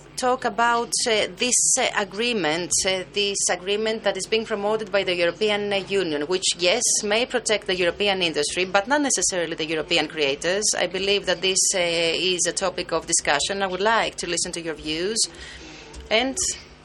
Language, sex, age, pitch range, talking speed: French, female, 30-49, 170-215 Hz, 180 wpm